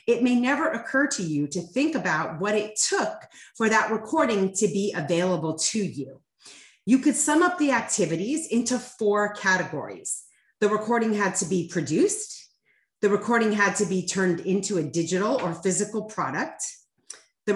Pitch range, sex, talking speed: 180-250 Hz, female, 165 wpm